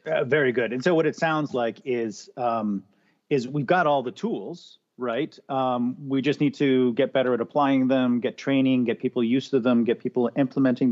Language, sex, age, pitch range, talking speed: English, male, 40-59, 115-140 Hz, 210 wpm